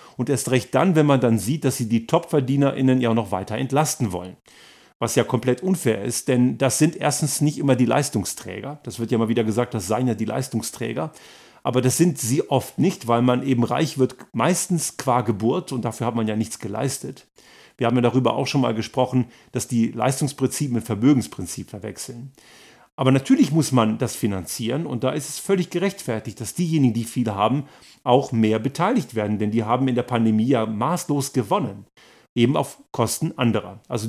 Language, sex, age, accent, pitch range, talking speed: German, male, 40-59, German, 115-145 Hz, 195 wpm